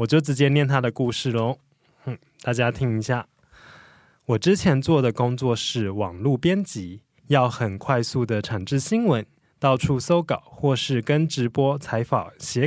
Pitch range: 120-155 Hz